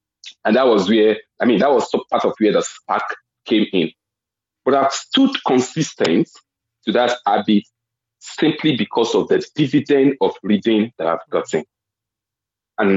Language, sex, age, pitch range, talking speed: English, male, 40-59, 105-155 Hz, 155 wpm